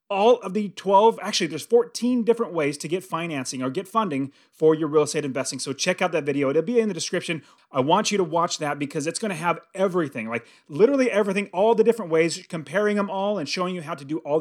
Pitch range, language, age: 145-195 Hz, English, 30-49